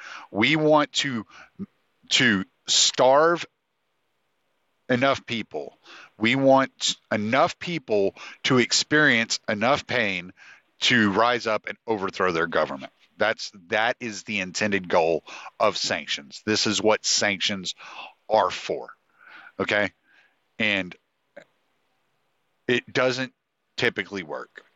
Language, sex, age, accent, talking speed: English, male, 50-69, American, 100 wpm